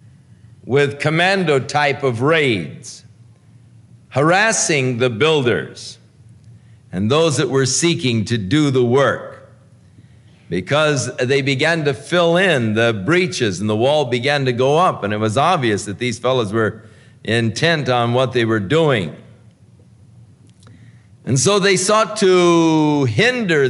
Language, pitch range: English, 115-155 Hz